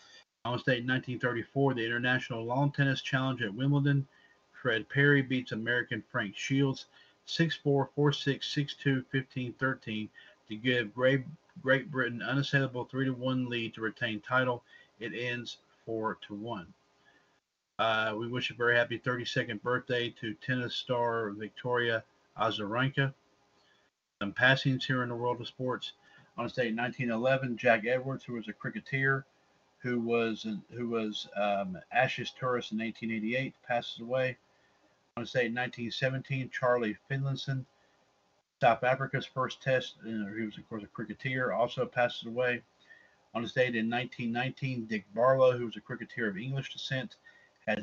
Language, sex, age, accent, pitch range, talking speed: English, male, 40-59, American, 115-130 Hz, 145 wpm